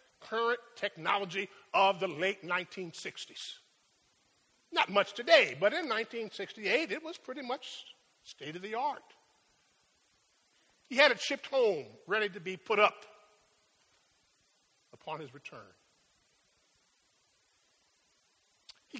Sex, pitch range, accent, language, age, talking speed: male, 185-255 Hz, American, English, 50-69, 105 wpm